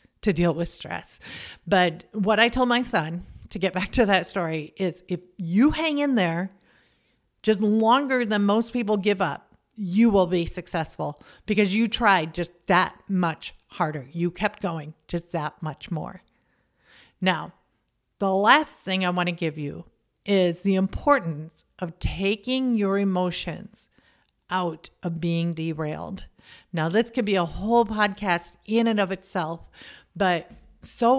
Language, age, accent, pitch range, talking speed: English, 50-69, American, 175-225 Hz, 150 wpm